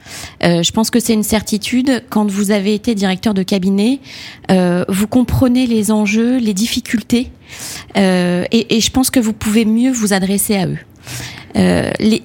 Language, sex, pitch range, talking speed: French, female, 195-230 Hz, 175 wpm